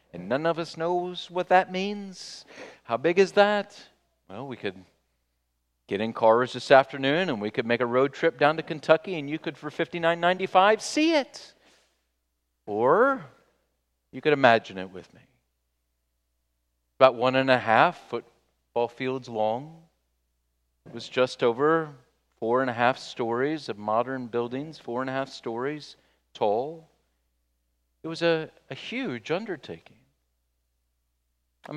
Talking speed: 145 wpm